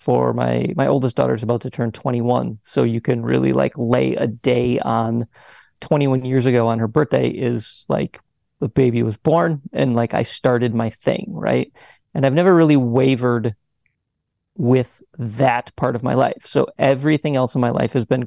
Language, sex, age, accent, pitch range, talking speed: English, male, 30-49, American, 115-135 Hz, 185 wpm